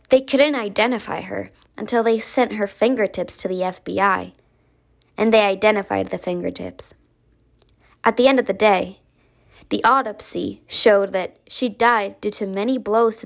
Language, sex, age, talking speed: English, female, 20-39, 155 wpm